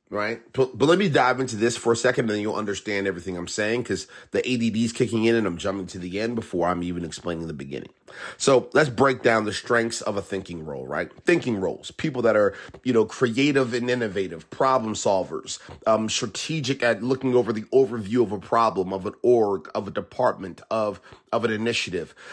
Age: 30-49